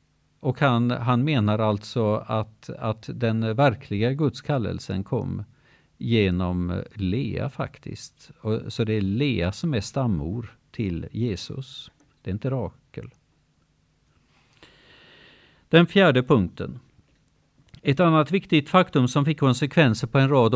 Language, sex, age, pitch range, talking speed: Swedish, male, 50-69, 105-145 Hz, 115 wpm